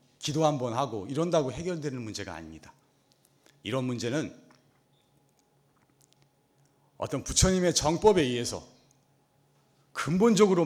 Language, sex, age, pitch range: Korean, male, 40-59, 120-155 Hz